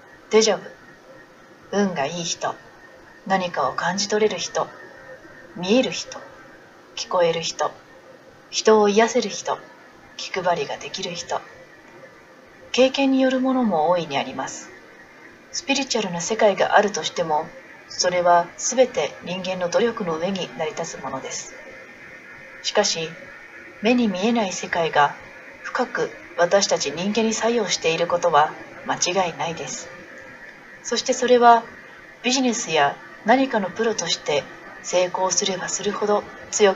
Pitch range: 170-230 Hz